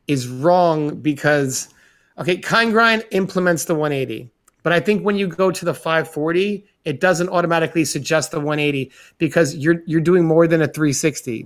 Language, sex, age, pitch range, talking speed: English, male, 30-49, 140-170 Hz, 170 wpm